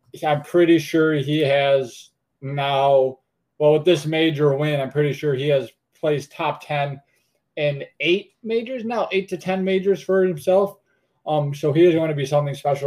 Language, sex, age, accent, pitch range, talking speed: English, male, 20-39, American, 135-155 Hz, 180 wpm